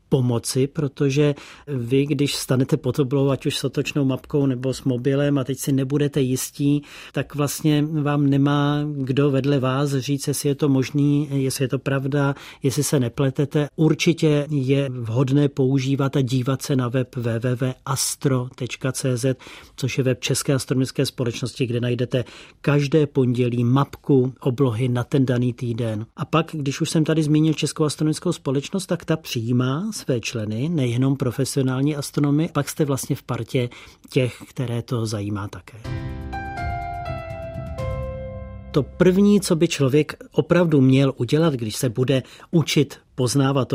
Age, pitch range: 40-59, 130-150 Hz